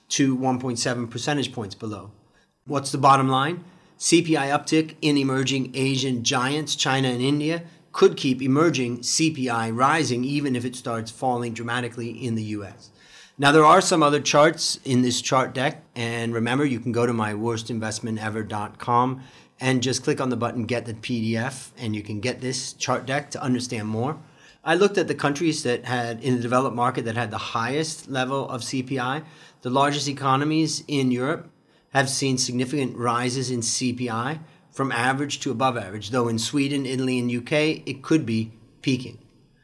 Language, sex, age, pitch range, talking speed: English, male, 30-49, 120-140 Hz, 170 wpm